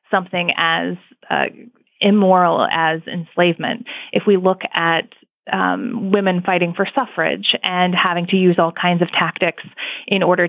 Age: 20-39